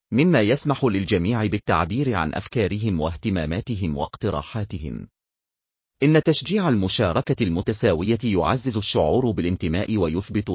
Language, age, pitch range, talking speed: Arabic, 40-59, 90-130 Hz, 90 wpm